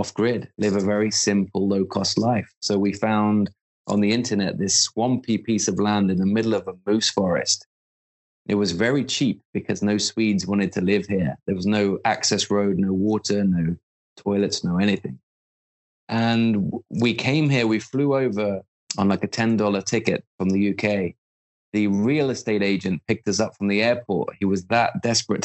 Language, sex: English, male